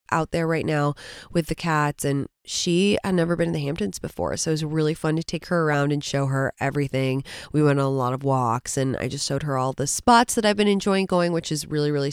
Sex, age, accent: female, 20-39, American